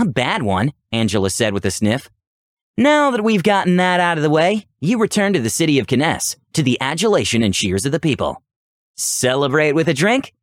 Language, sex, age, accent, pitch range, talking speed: English, male, 30-49, American, 110-175 Hz, 205 wpm